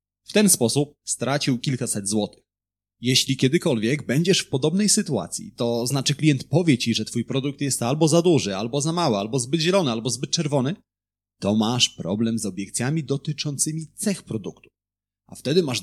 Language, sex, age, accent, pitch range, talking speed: Polish, male, 30-49, native, 105-155 Hz, 165 wpm